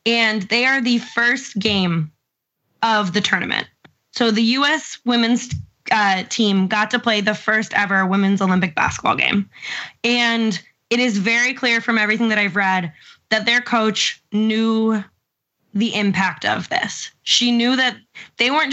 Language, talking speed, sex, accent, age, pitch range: English, 155 wpm, female, American, 10-29, 190-235 Hz